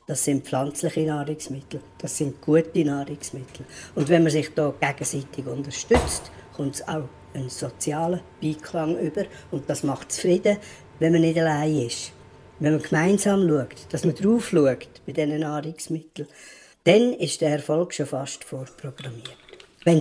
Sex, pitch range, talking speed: female, 145-180 Hz, 155 wpm